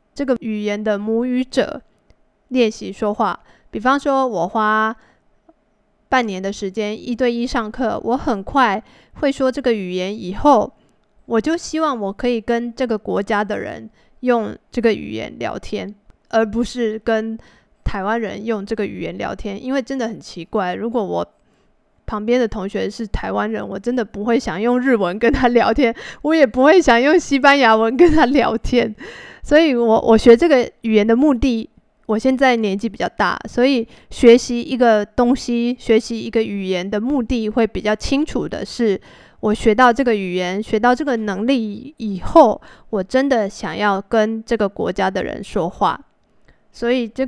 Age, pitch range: 20-39, 210-250 Hz